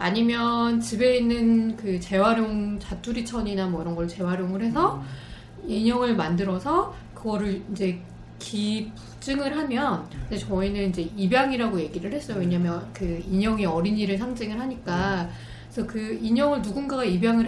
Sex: female